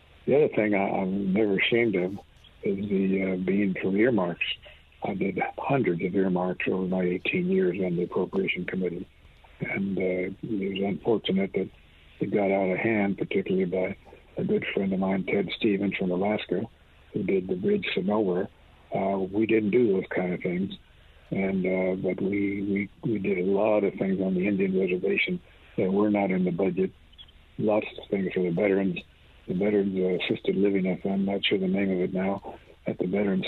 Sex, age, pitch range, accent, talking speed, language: male, 60-79, 90-100 Hz, American, 185 wpm, English